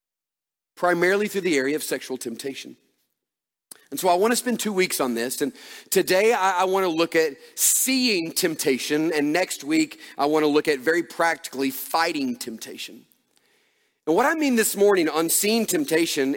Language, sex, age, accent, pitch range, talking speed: English, male, 40-59, American, 145-205 Hz, 160 wpm